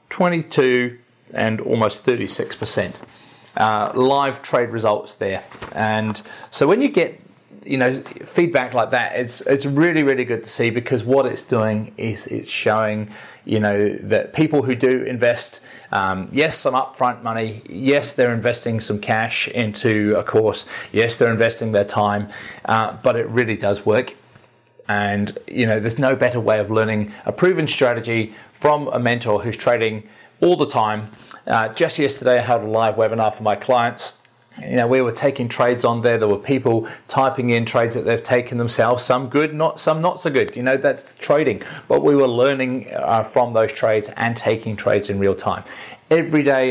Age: 30-49